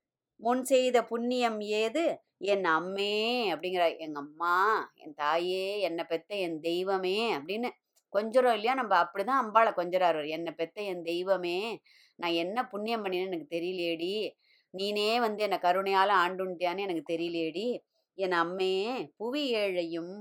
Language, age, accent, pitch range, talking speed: Tamil, 20-39, native, 180-240 Hz, 125 wpm